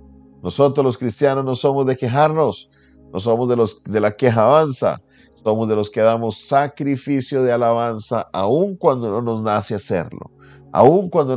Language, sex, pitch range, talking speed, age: Spanish, male, 110-135 Hz, 160 wpm, 50-69